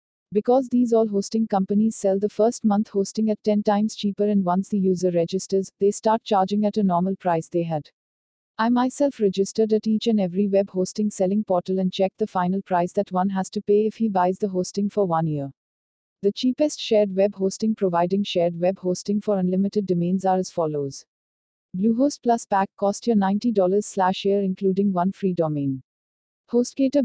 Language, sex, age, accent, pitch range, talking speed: English, female, 50-69, Indian, 180-210 Hz, 190 wpm